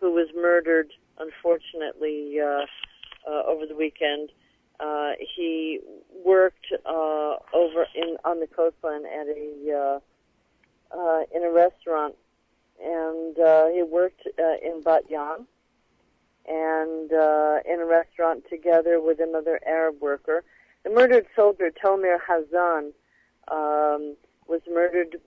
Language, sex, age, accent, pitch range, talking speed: English, female, 40-59, American, 155-175 Hz, 120 wpm